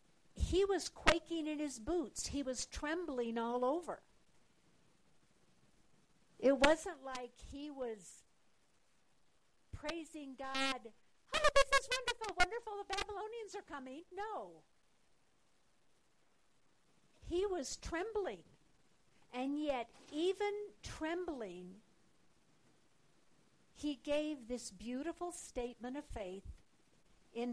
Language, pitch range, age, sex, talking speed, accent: English, 230-300 Hz, 60-79, female, 95 wpm, American